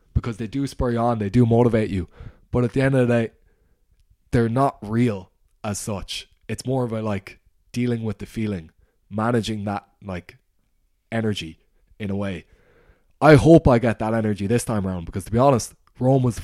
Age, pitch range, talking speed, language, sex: 20-39, 95-115 Hz, 195 wpm, English, male